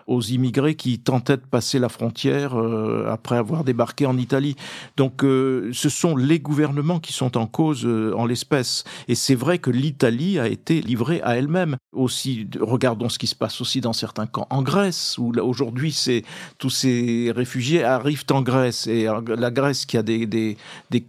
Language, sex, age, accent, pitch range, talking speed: French, male, 50-69, French, 120-155 Hz, 180 wpm